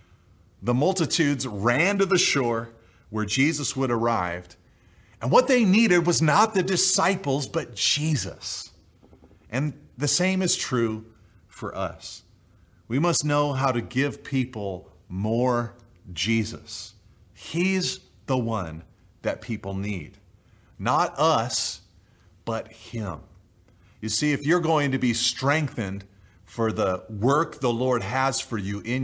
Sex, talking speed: male, 130 wpm